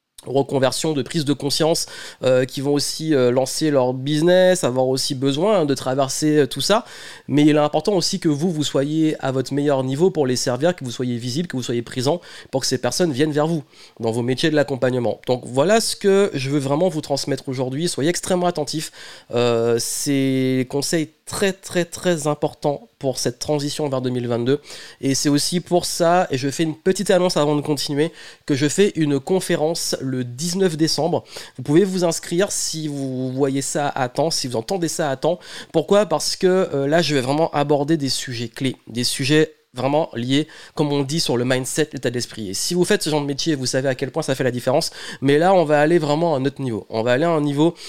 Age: 20-39